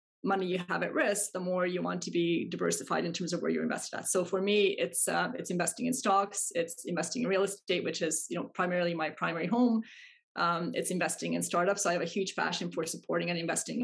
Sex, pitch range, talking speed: female, 175-230 Hz, 245 wpm